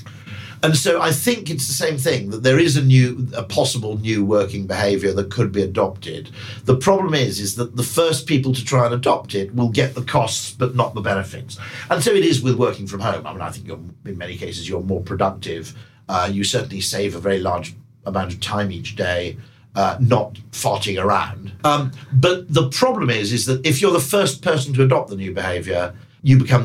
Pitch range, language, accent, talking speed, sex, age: 100-130 Hz, English, British, 220 wpm, male, 50-69